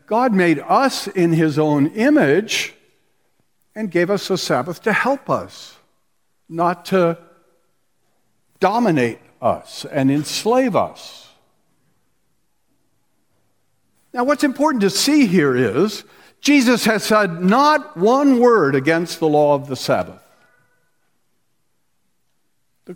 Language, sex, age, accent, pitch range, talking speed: English, male, 60-79, American, 155-255 Hz, 110 wpm